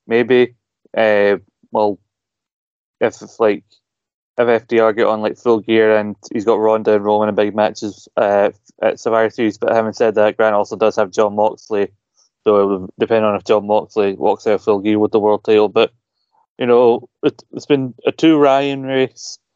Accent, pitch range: British, 110-125 Hz